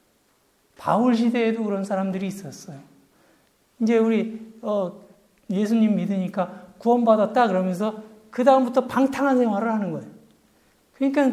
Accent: native